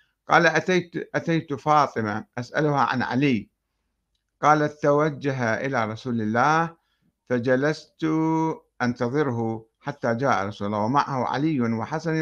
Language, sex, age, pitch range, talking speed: Arabic, male, 60-79, 115-160 Hz, 100 wpm